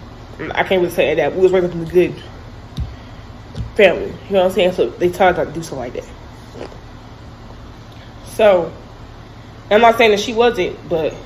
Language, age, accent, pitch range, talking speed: English, 10-29, American, 130-200 Hz, 190 wpm